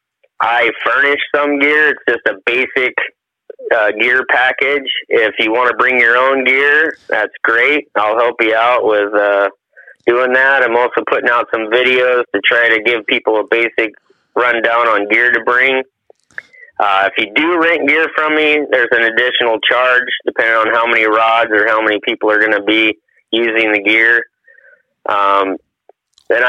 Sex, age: male, 30-49